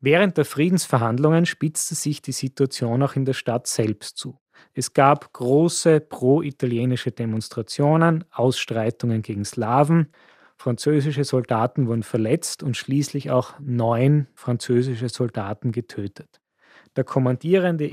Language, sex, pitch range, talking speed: German, male, 120-150 Hz, 115 wpm